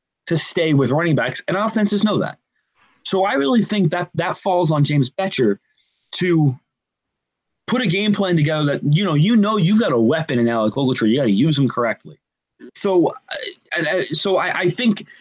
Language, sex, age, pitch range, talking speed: English, male, 20-39, 135-185 Hz, 190 wpm